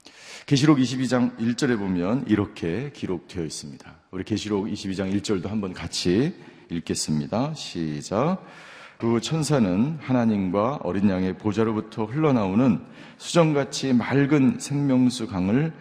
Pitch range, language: 110-150 Hz, Korean